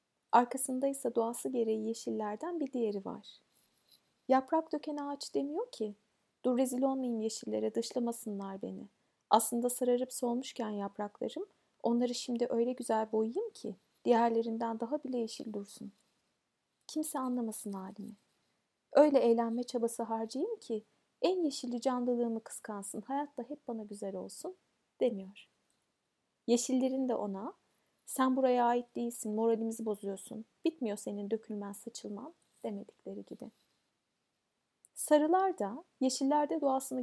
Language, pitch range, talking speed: Turkish, 215-265 Hz, 115 wpm